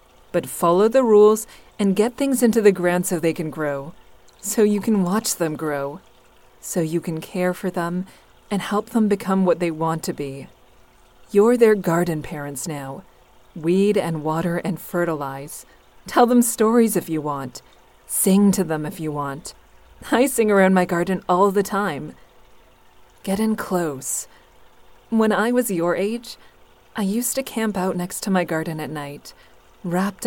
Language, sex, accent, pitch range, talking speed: English, female, American, 165-210 Hz, 170 wpm